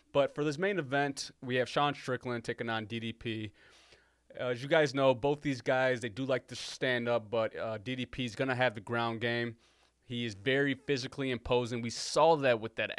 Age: 20-39